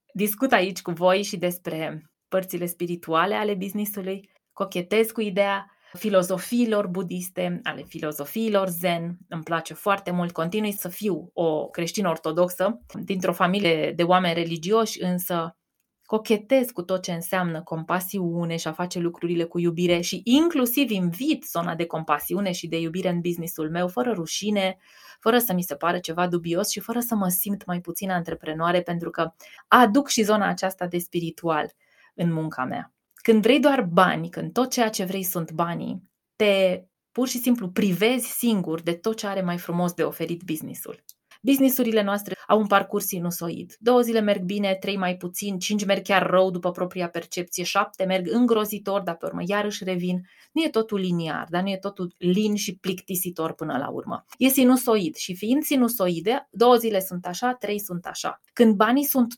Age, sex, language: 20-39, female, Romanian